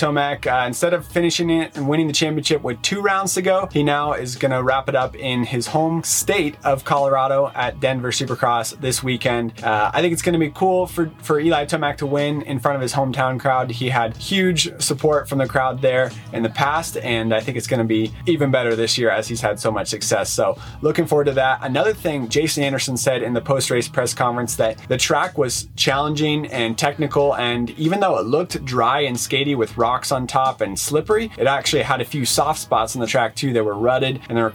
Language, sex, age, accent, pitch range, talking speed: English, male, 30-49, American, 120-145 Hz, 230 wpm